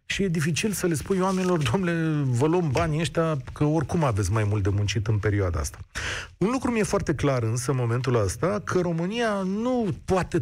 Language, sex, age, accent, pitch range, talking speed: Romanian, male, 40-59, native, 125-175 Hz, 200 wpm